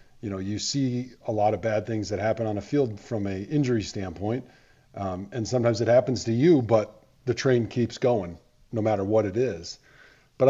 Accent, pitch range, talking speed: American, 100-125 Hz, 205 wpm